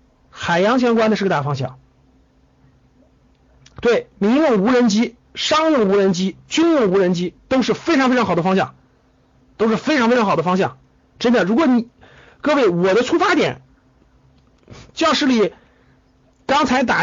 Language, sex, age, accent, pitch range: Chinese, male, 50-69, native, 170-250 Hz